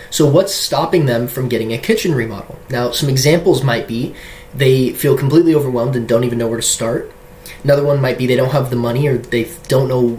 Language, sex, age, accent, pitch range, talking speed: English, male, 20-39, American, 120-140 Hz, 225 wpm